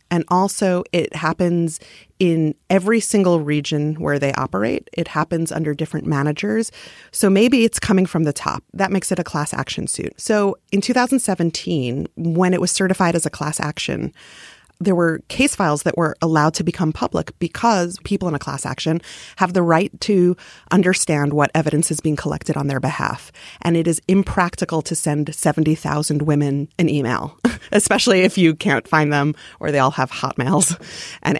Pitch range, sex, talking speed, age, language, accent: 160-210 Hz, female, 175 wpm, 30-49, English, American